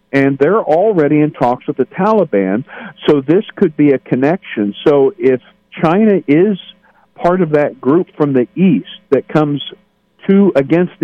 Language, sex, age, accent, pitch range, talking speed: English, male, 50-69, American, 115-165 Hz, 160 wpm